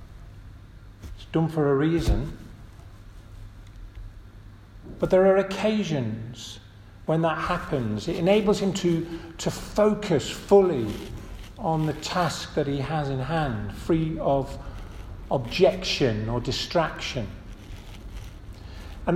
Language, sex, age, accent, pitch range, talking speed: English, male, 40-59, British, 100-165 Hz, 100 wpm